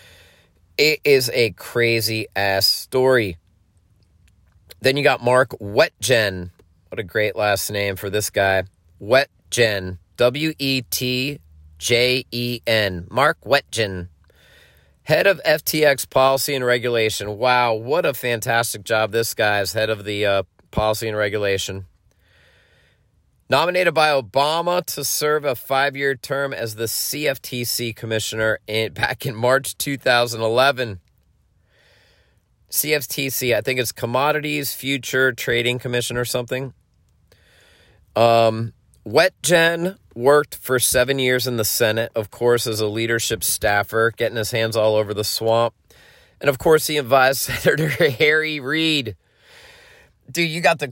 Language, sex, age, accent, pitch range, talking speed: English, male, 40-59, American, 105-140 Hz, 125 wpm